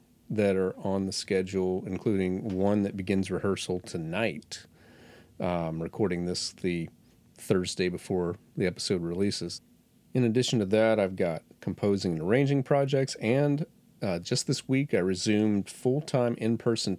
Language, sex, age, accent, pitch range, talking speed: English, male, 40-59, American, 95-120 Hz, 140 wpm